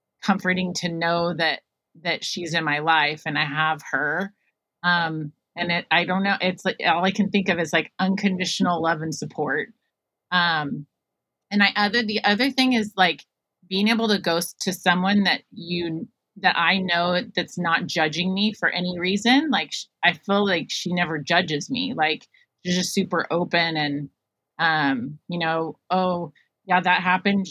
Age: 30-49